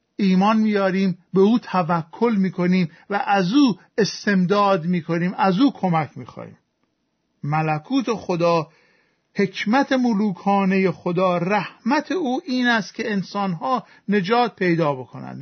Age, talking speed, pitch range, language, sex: 50-69, 115 wpm, 190-230 Hz, Persian, male